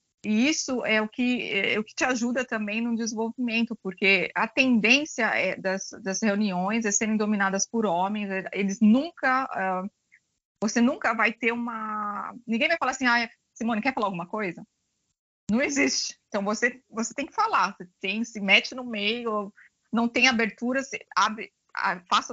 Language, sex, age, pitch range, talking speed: Portuguese, female, 20-39, 190-235 Hz, 150 wpm